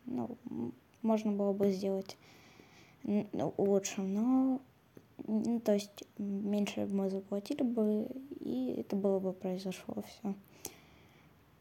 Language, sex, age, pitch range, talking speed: Ukrainian, female, 20-39, 190-225 Hz, 115 wpm